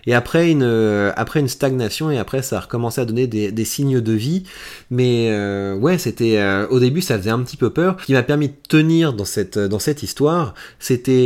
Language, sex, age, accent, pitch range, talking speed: French, male, 30-49, French, 110-135 Hz, 230 wpm